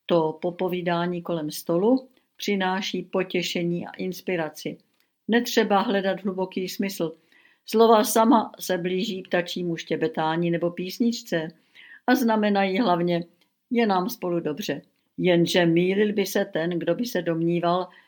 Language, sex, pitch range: Czech, female, 170-205 Hz